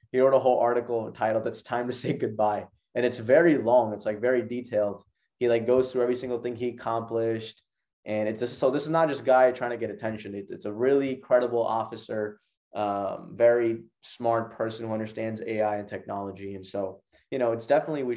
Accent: American